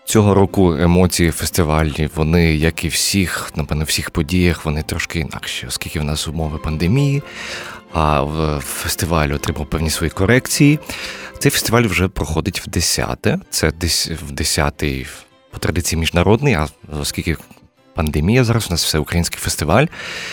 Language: Ukrainian